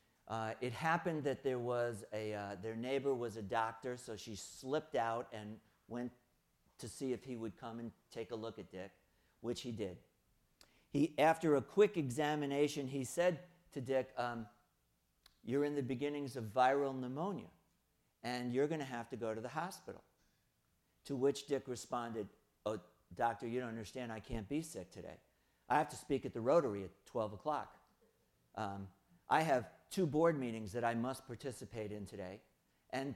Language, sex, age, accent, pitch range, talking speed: English, male, 50-69, American, 110-140 Hz, 175 wpm